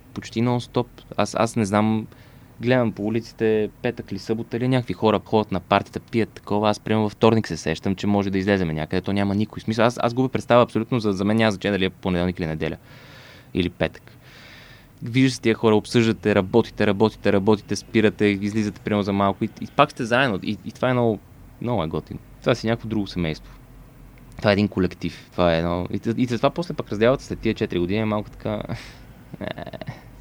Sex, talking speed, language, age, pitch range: male, 200 wpm, Bulgarian, 20-39, 95-115 Hz